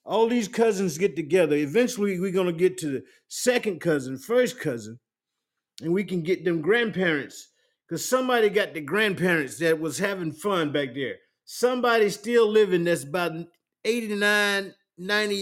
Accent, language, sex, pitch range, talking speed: American, English, male, 160-200 Hz, 150 wpm